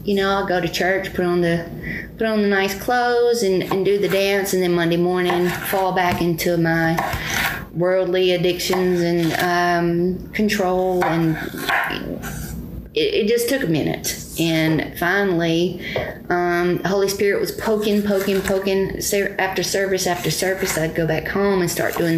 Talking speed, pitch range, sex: 160 wpm, 160-195 Hz, female